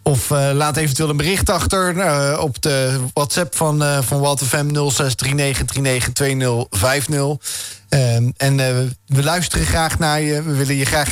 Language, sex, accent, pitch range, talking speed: Dutch, male, Dutch, 120-150 Hz, 155 wpm